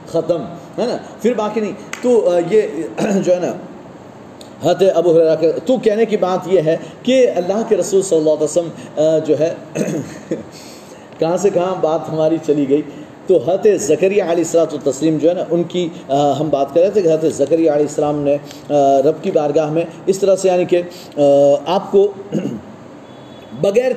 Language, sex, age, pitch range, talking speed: Urdu, male, 30-49, 155-195 Hz, 175 wpm